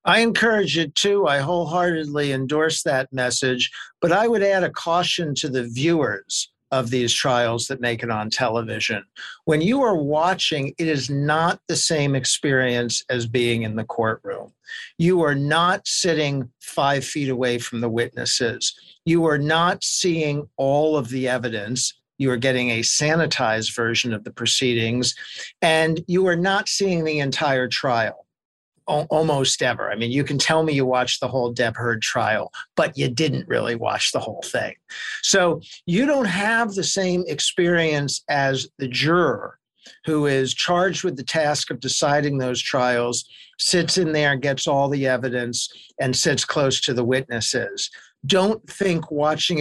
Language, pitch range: English, 125-165 Hz